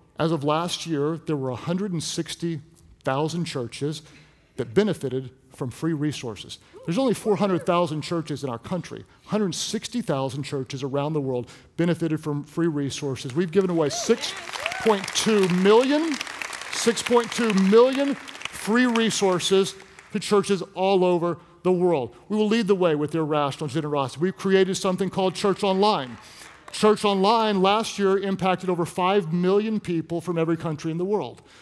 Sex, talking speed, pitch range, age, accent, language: male, 140 wpm, 160-195 Hz, 50-69, American, English